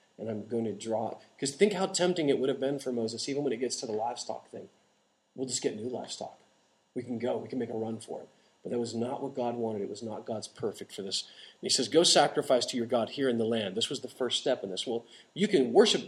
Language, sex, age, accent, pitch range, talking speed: English, male, 40-59, American, 115-145 Hz, 285 wpm